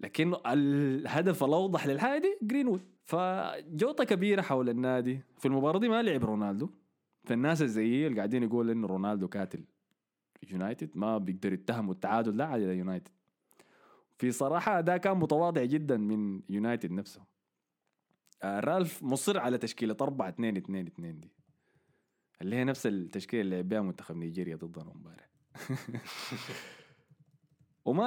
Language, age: Arabic, 20-39